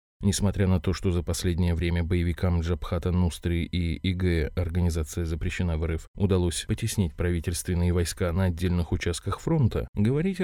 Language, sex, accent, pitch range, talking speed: Russian, male, native, 85-110 Hz, 140 wpm